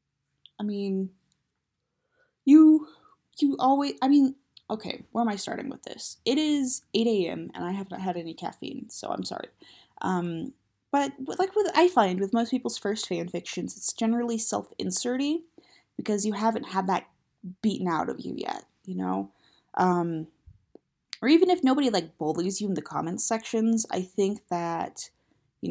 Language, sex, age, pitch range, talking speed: English, female, 20-39, 170-225 Hz, 165 wpm